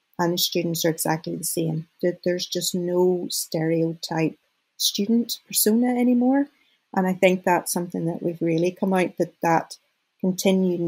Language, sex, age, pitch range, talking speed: English, female, 40-59, 170-210 Hz, 145 wpm